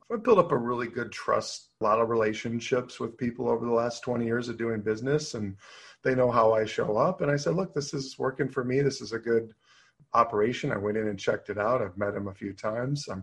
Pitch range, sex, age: 105-135 Hz, male, 40-59